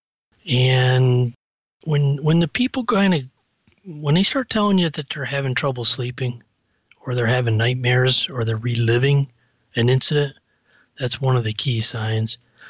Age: 30-49